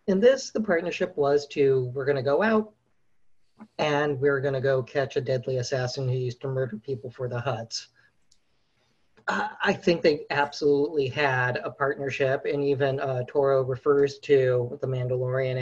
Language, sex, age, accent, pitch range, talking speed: English, male, 40-59, American, 125-145 Hz, 165 wpm